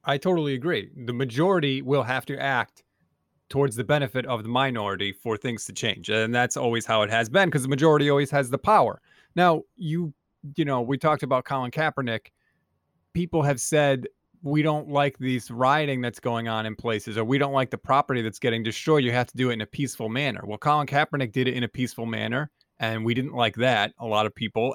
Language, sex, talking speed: English, male, 220 wpm